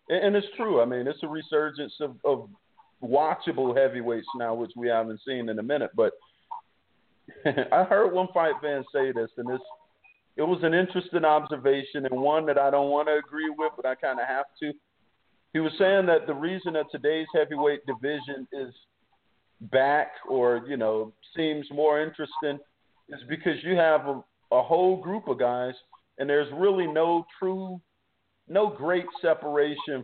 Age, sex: 50-69, male